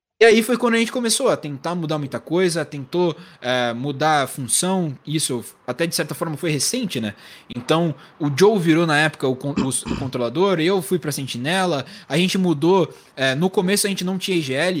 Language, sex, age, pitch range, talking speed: Portuguese, male, 20-39, 150-195 Hz, 205 wpm